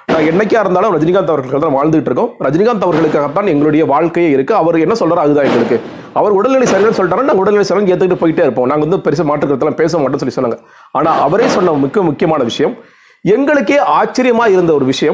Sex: male